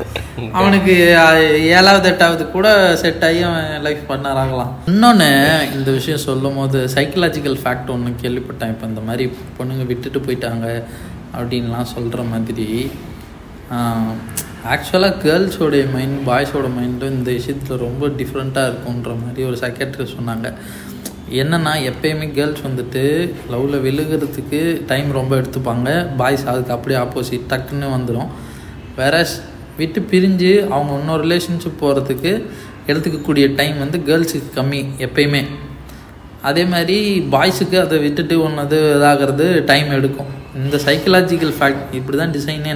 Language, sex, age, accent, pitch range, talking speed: Tamil, male, 20-39, native, 125-155 Hz, 115 wpm